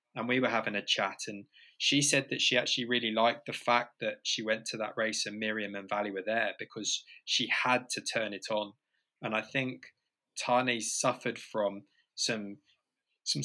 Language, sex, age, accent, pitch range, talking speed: English, male, 20-39, British, 105-125 Hz, 190 wpm